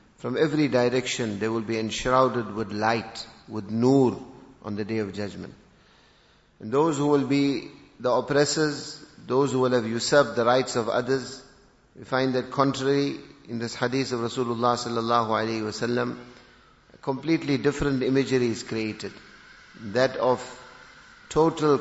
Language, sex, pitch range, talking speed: English, male, 115-140 Hz, 140 wpm